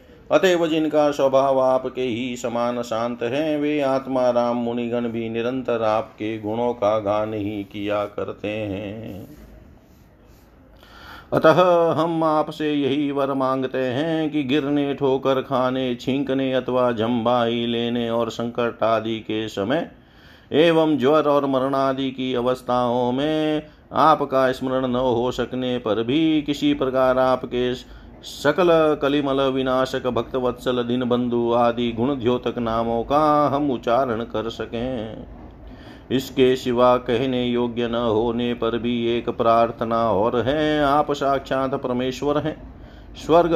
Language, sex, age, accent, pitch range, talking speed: Hindi, male, 50-69, native, 120-140 Hz, 125 wpm